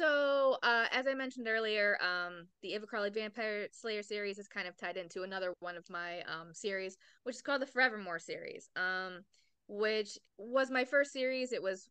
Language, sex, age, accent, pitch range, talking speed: English, female, 20-39, American, 185-240 Hz, 190 wpm